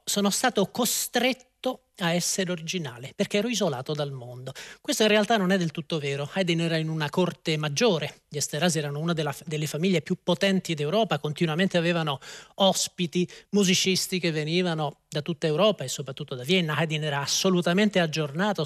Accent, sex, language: native, male, Italian